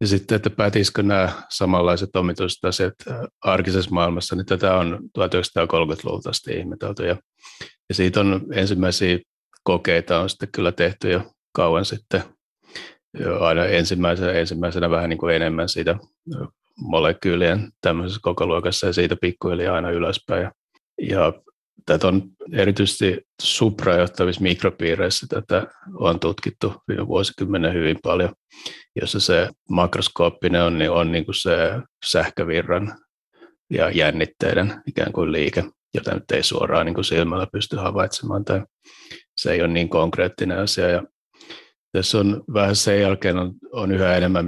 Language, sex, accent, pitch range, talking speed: Finnish, male, native, 85-100 Hz, 135 wpm